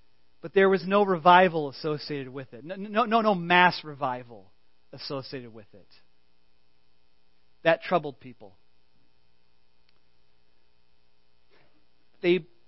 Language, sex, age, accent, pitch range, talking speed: English, male, 40-59, American, 125-200 Hz, 100 wpm